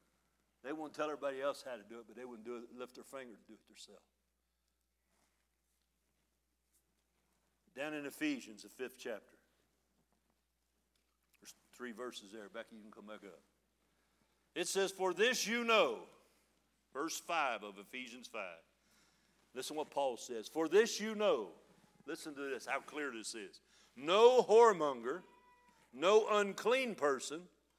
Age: 60-79